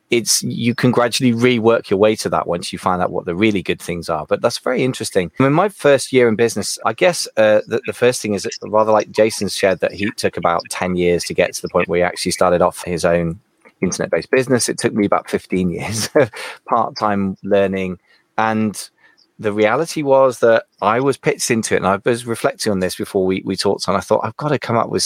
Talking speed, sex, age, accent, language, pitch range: 245 wpm, male, 20-39, British, English, 95-120 Hz